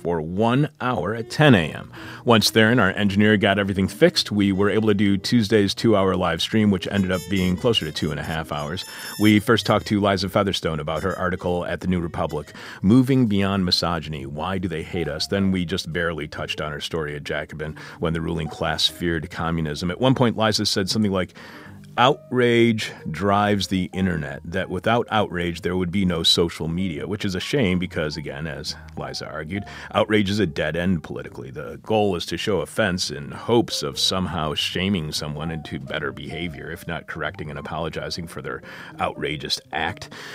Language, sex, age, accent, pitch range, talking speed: English, male, 40-59, American, 85-110 Hz, 190 wpm